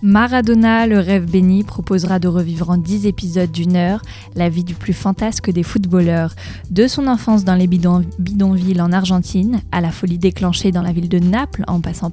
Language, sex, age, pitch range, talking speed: French, female, 20-39, 180-215 Hz, 190 wpm